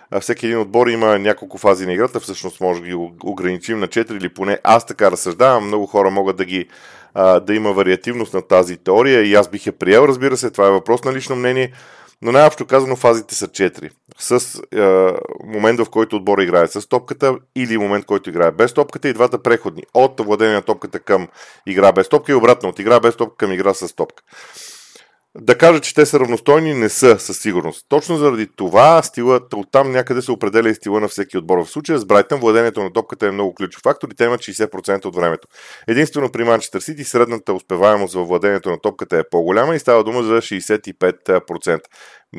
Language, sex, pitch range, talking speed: Bulgarian, male, 100-125 Hz, 205 wpm